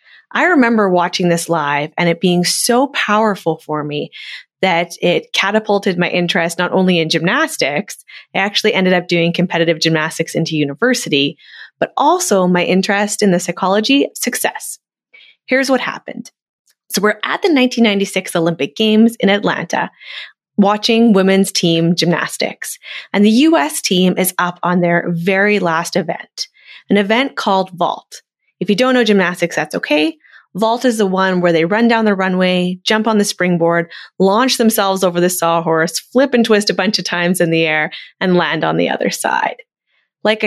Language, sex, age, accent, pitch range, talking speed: English, female, 20-39, American, 175-225 Hz, 165 wpm